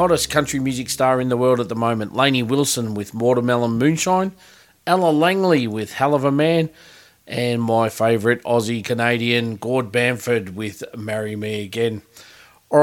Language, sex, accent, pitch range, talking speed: English, male, Australian, 125-165 Hz, 160 wpm